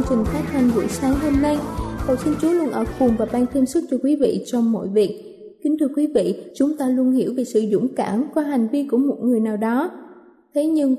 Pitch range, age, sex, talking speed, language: 240-300 Hz, 20-39, female, 245 wpm, Vietnamese